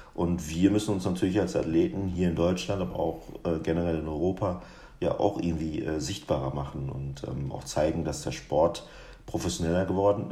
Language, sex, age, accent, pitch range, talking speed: German, male, 50-69, German, 85-100 Hz, 165 wpm